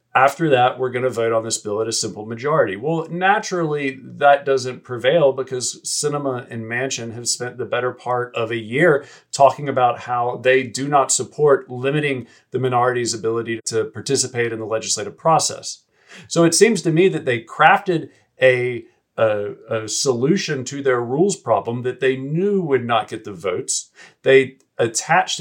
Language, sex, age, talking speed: English, male, 40-59, 170 wpm